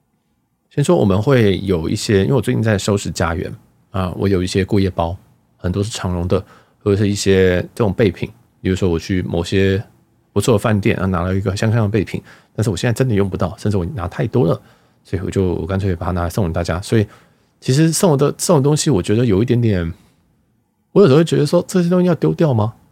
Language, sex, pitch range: Chinese, male, 95-125 Hz